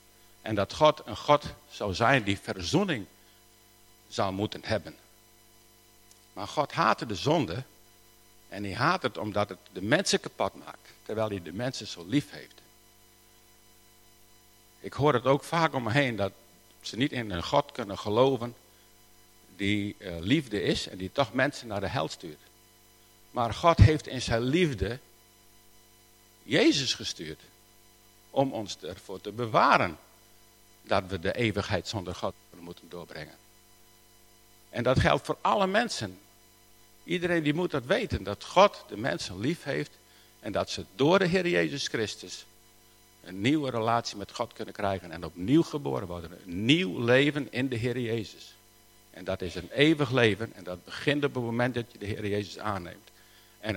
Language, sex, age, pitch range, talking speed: Dutch, male, 50-69, 90-120 Hz, 160 wpm